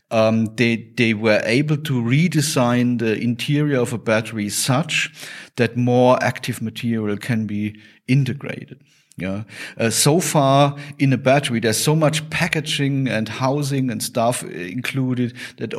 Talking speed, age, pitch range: 140 wpm, 40-59, 110-140 Hz